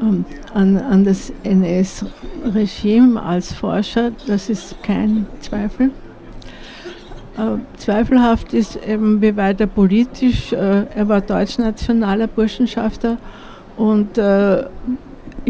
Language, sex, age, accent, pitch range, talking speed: German, female, 60-79, Austrian, 200-235 Hz, 95 wpm